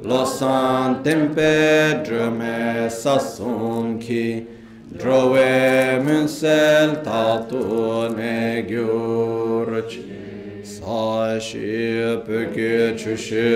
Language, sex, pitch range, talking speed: Italian, male, 110-130 Hz, 60 wpm